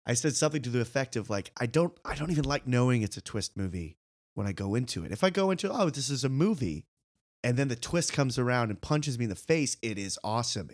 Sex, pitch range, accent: male, 100-145 Hz, American